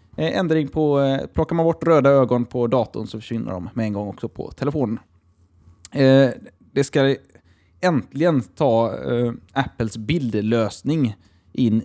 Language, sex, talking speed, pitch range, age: Swedish, male, 125 wpm, 105-150 Hz, 20-39